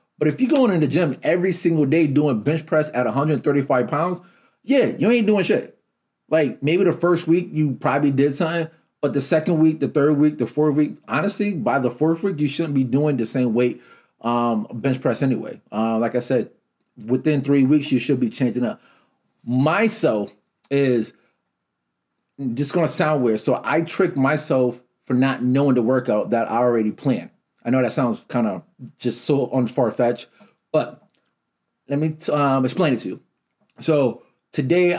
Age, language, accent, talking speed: 30-49, English, American, 185 wpm